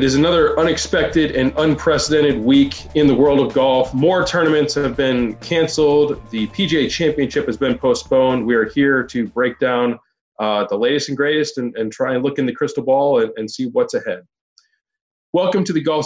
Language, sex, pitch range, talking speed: English, male, 135-175 Hz, 195 wpm